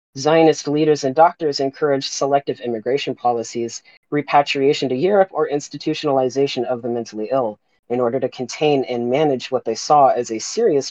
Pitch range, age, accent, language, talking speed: 120-155 Hz, 40-59, American, English, 160 wpm